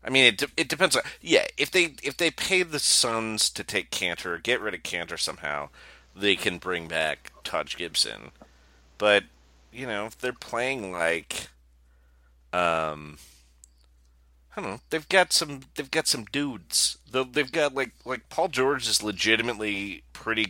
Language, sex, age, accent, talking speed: English, male, 30-49, American, 160 wpm